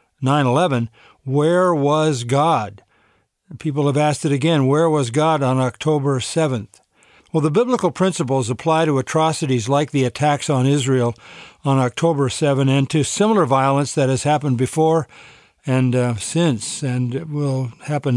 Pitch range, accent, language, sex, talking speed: 130-155 Hz, American, English, male, 140 wpm